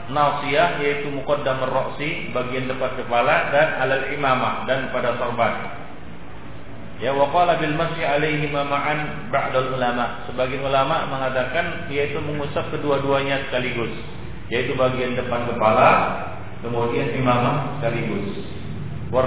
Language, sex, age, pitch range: Malay, male, 40-59, 125-150 Hz